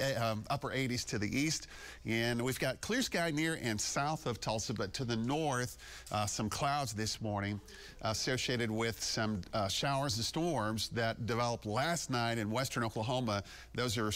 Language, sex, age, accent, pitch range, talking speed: English, male, 40-59, American, 110-145 Hz, 175 wpm